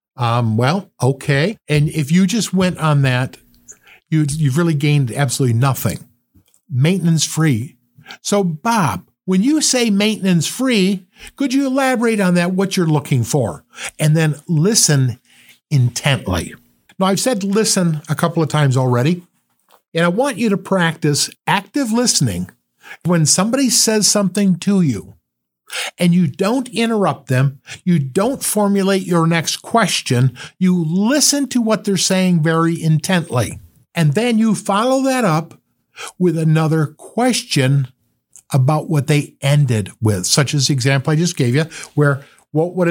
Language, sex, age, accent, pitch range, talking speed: English, male, 50-69, American, 135-195 Hz, 140 wpm